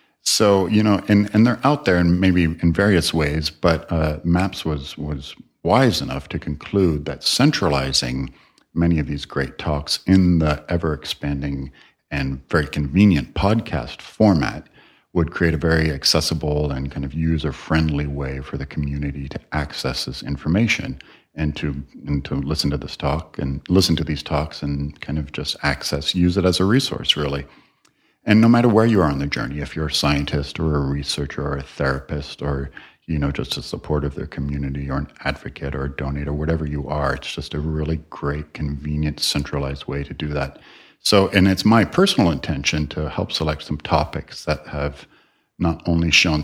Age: 50-69